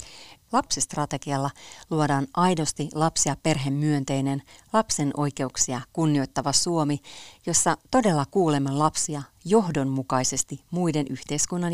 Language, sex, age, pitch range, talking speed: Finnish, female, 40-59, 135-165 Hz, 80 wpm